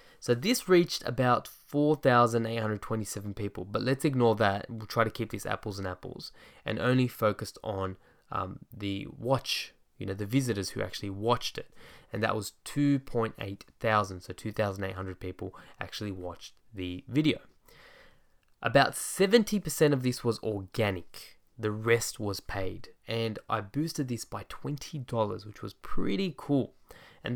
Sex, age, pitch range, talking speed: male, 10-29, 105-135 Hz, 145 wpm